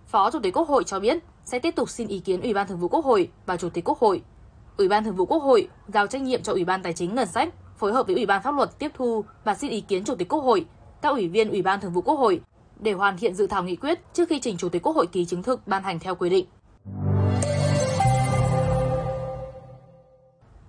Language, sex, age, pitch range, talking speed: Vietnamese, female, 10-29, 175-235 Hz, 255 wpm